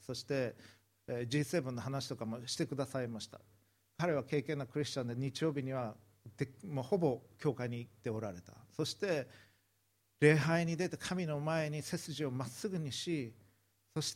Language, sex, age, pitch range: Japanese, male, 50-69, 105-145 Hz